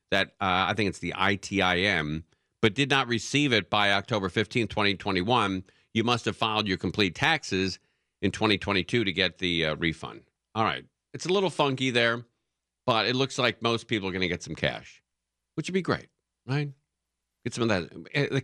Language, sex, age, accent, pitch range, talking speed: English, male, 50-69, American, 90-125 Hz, 190 wpm